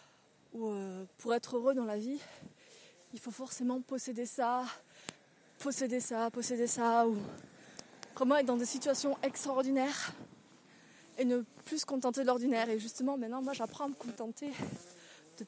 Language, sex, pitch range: French, female, 220-270 Hz